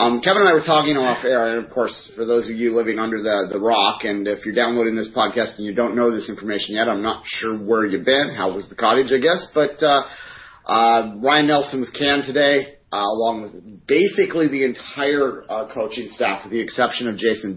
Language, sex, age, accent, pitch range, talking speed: English, male, 30-49, American, 105-125 Hz, 230 wpm